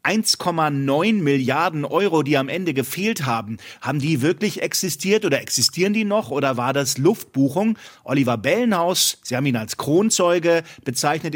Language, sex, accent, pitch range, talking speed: German, male, German, 130-170 Hz, 145 wpm